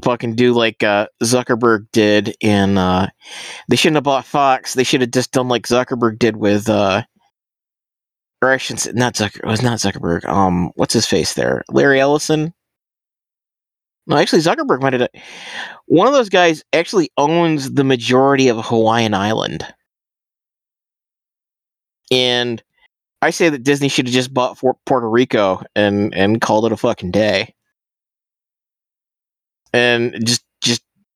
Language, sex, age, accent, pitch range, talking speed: English, male, 30-49, American, 110-130 Hz, 155 wpm